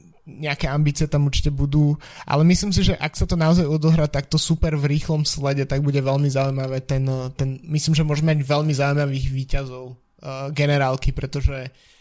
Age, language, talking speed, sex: 20-39, Slovak, 170 wpm, male